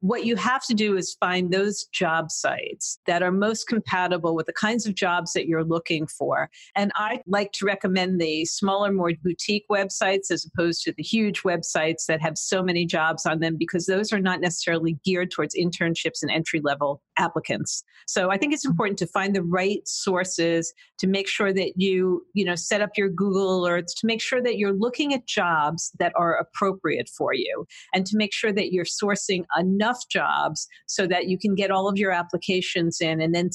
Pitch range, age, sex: 170-205 Hz, 50-69, female